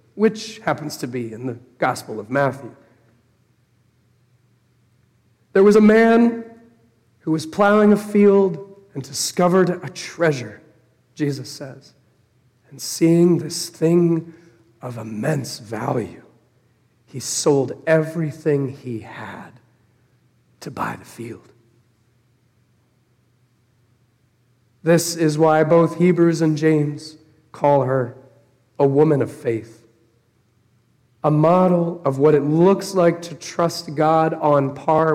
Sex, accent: male, American